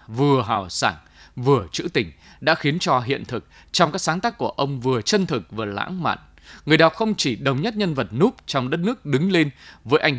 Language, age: Vietnamese, 20-39